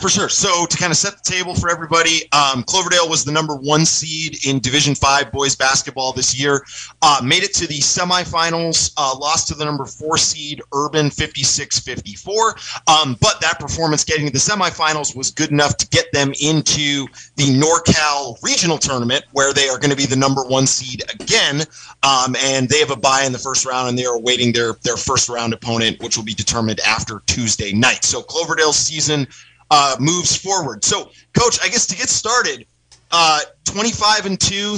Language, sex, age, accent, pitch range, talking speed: English, male, 30-49, American, 135-170 Hz, 195 wpm